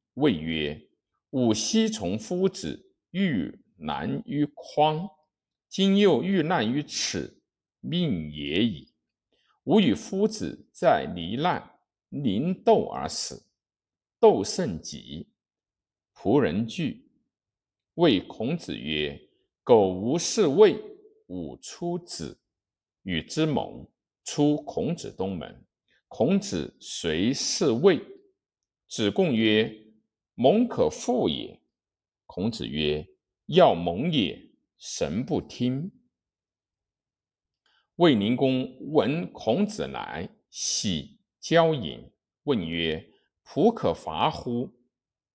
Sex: male